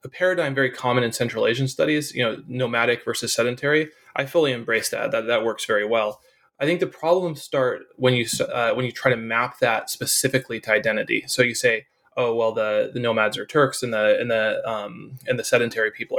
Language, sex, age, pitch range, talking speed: English, male, 20-39, 120-140 Hz, 215 wpm